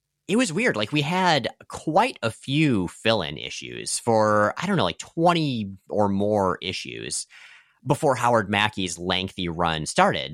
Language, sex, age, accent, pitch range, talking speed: English, male, 30-49, American, 95-150 Hz, 150 wpm